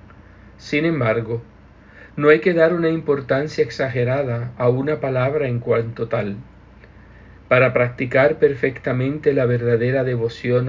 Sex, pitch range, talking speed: male, 115-145 Hz, 120 wpm